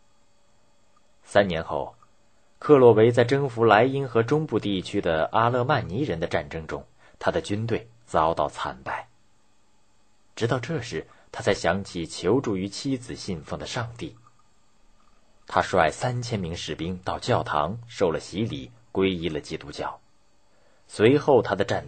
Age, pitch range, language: 30-49, 90-120 Hz, Chinese